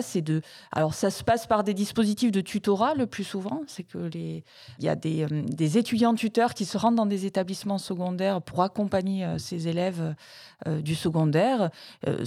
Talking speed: 200 wpm